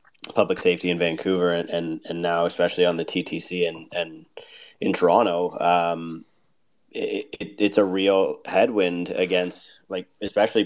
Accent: American